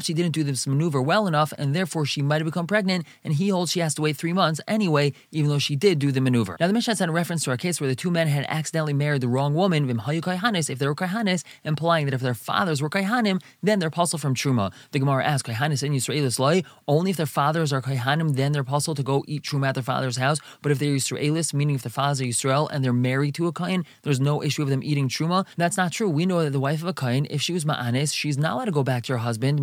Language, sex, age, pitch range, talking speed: English, male, 20-39, 135-170 Hz, 285 wpm